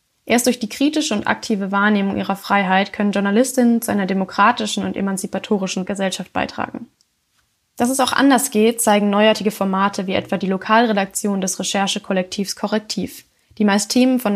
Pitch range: 195-230 Hz